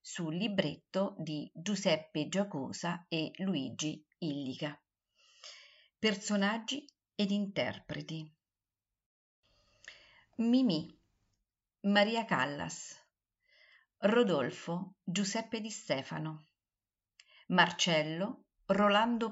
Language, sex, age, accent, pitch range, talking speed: Italian, female, 50-69, native, 145-205 Hz, 60 wpm